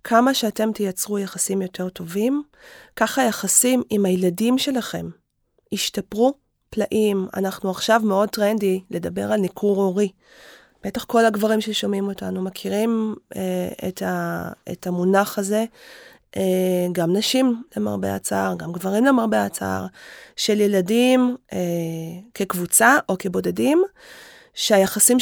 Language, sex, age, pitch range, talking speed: Hebrew, female, 20-39, 185-235 Hz, 115 wpm